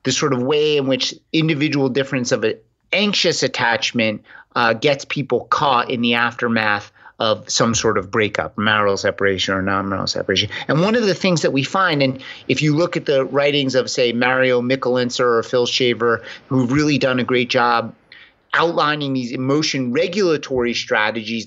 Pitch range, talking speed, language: 125-160 Hz, 175 wpm, English